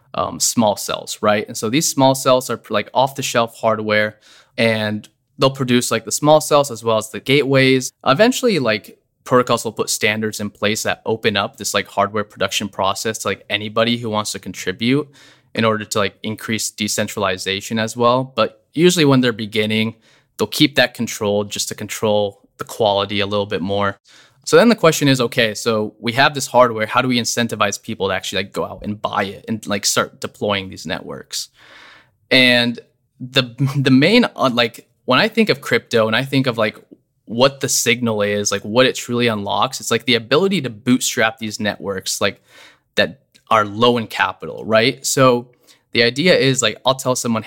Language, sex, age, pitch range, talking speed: English, male, 20-39, 105-130 Hz, 190 wpm